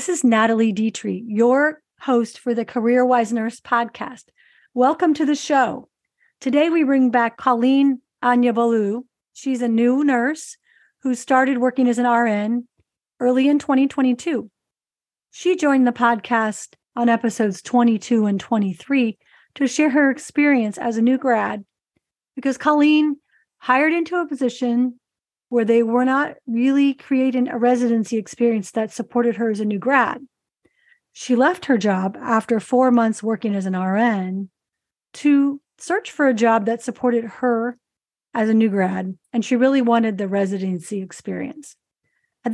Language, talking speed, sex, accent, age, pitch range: English, 145 wpm, female, American, 40-59, 225-270 Hz